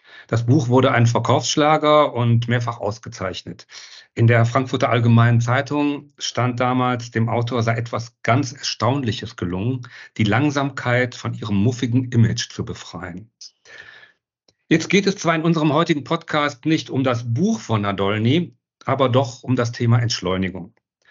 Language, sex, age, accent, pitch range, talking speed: German, male, 50-69, German, 115-140 Hz, 140 wpm